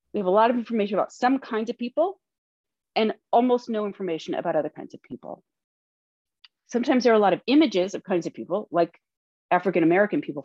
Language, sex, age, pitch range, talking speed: English, female, 40-59, 200-280 Hz, 195 wpm